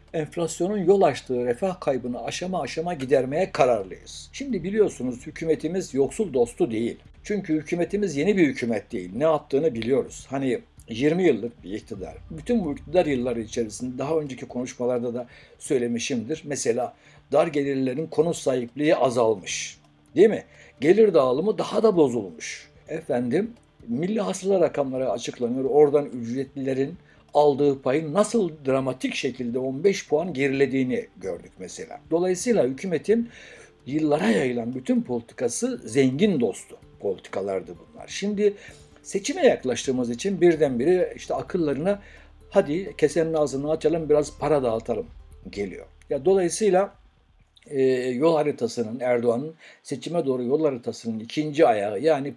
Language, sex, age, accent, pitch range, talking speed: Turkish, male, 60-79, native, 130-190 Hz, 120 wpm